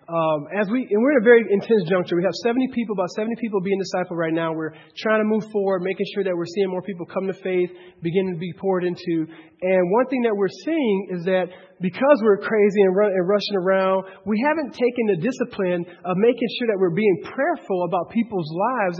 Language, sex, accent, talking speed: English, male, American, 225 wpm